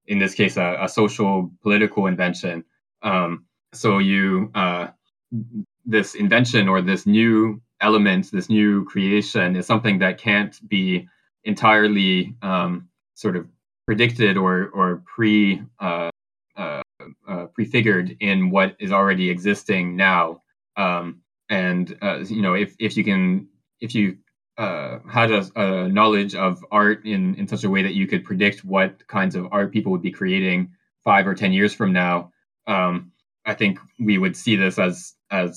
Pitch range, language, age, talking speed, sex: 90-110 Hz, English, 20-39, 160 wpm, male